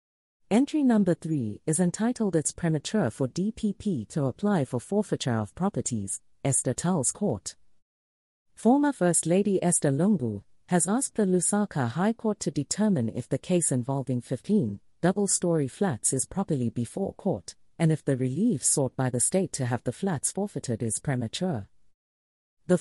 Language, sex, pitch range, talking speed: English, female, 120-190 Hz, 155 wpm